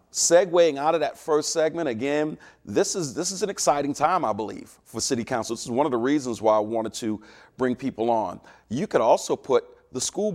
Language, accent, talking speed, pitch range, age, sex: English, American, 215 wpm, 115-145 Hz, 40-59, male